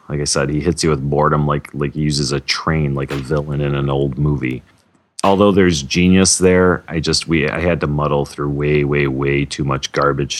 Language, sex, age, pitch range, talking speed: English, male, 30-49, 70-80 Hz, 225 wpm